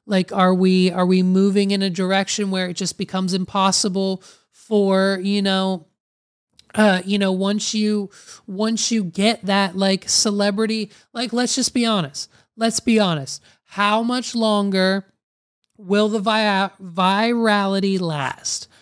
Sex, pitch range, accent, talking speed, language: male, 195-230 Hz, American, 140 wpm, English